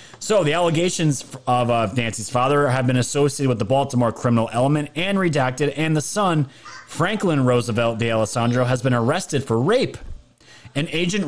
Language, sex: English, male